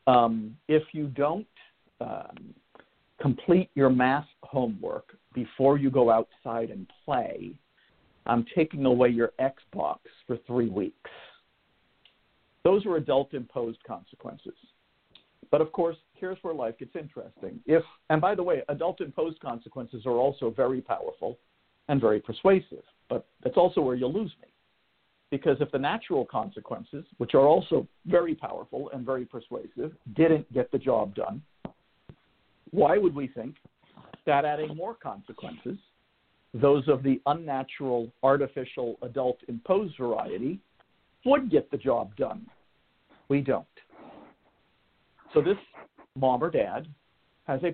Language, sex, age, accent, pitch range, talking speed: English, male, 50-69, American, 125-165 Hz, 130 wpm